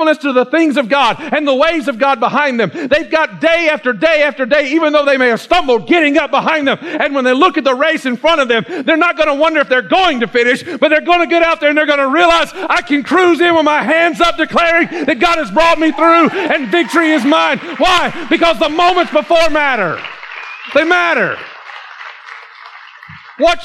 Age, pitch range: 50-69, 205-315 Hz